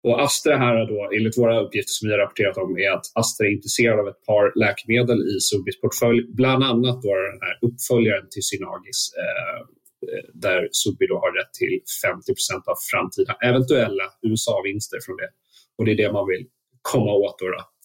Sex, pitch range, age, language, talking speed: male, 110-175 Hz, 30-49, Swedish, 180 wpm